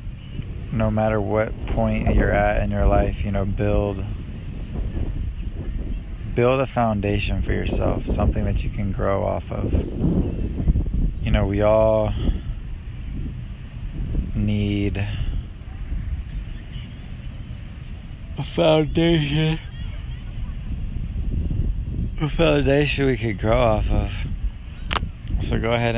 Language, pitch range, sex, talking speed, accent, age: English, 90-110 Hz, male, 95 wpm, American, 20-39